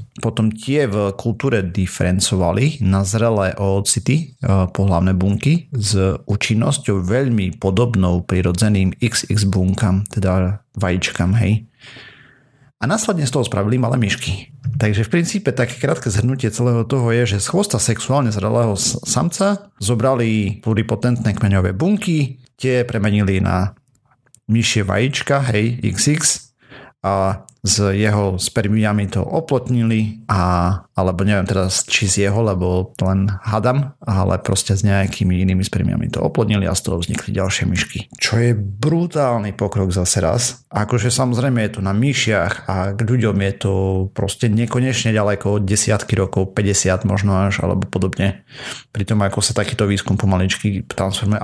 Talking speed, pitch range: 140 wpm, 95-120 Hz